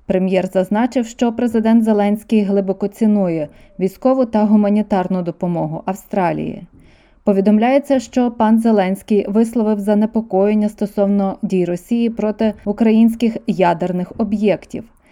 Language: Ukrainian